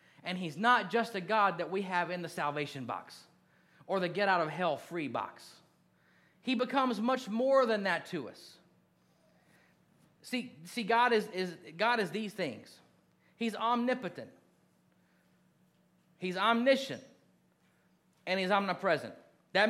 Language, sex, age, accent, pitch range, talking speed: English, male, 30-49, American, 175-230 Hz, 130 wpm